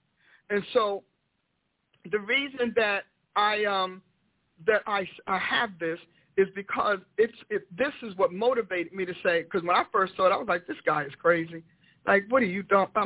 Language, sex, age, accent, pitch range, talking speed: English, male, 50-69, American, 170-220 Hz, 190 wpm